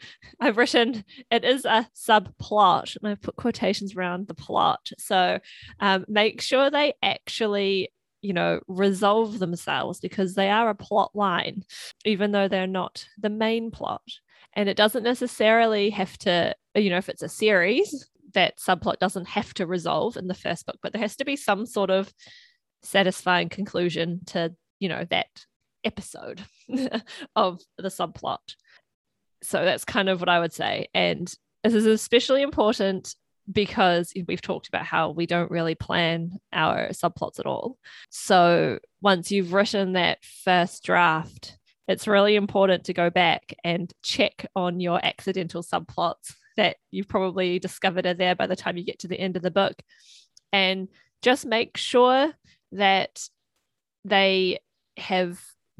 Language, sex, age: English, female, 20-39